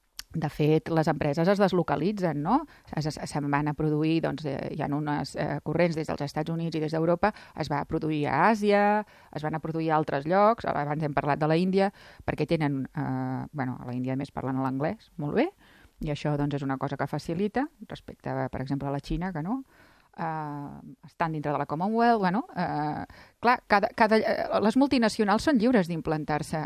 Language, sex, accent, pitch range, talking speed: Spanish, female, Spanish, 150-200 Hz, 205 wpm